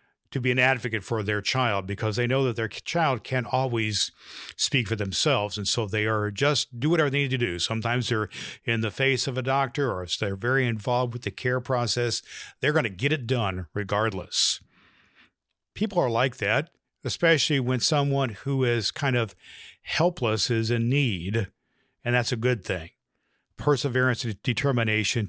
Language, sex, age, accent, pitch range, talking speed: English, male, 50-69, American, 115-135 Hz, 180 wpm